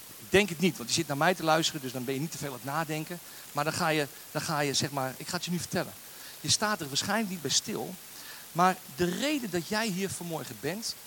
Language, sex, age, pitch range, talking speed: Dutch, male, 40-59, 150-215 Hz, 270 wpm